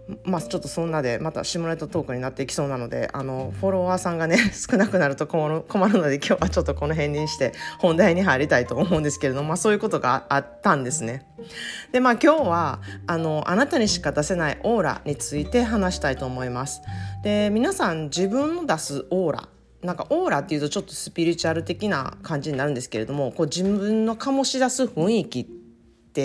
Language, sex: Japanese, female